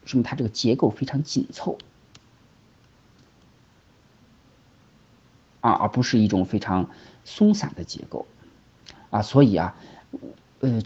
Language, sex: Chinese, male